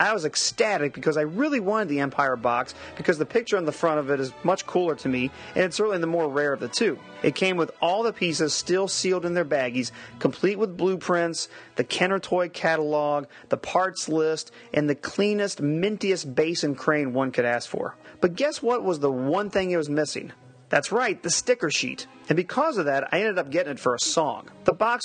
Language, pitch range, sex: English, 140-190 Hz, male